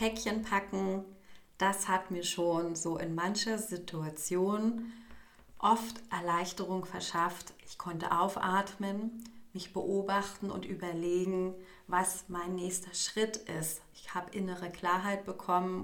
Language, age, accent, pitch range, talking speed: German, 30-49, German, 180-210 Hz, 110 wpm